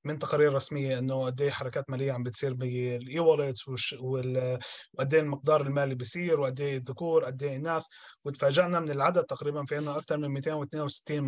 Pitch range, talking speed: 135-155 Hz, 140 wpm